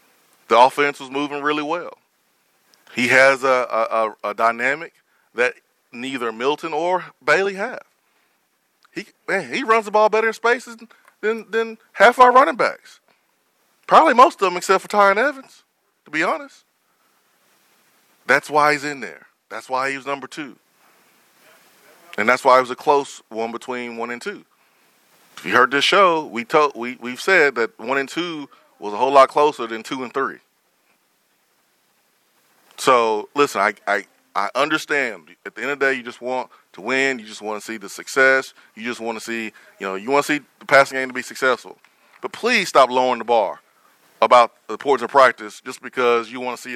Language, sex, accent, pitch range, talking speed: English, male, American, 120-180 Hz, 190 wpm